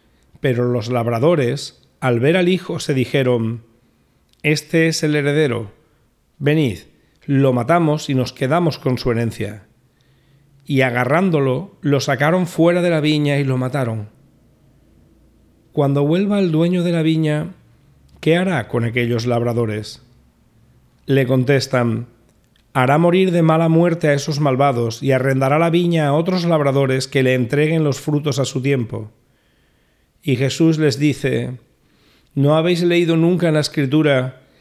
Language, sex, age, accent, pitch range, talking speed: Spanish, male, 40-59, Spanish, 120-155 Hz, 140 wpm